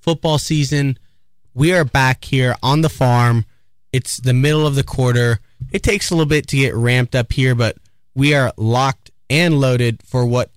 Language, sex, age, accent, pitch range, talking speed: English, male, 20-39, American, 115-150 Hz, 185 wpm